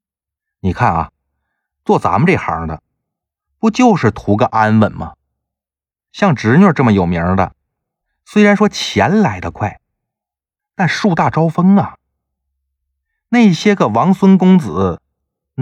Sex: male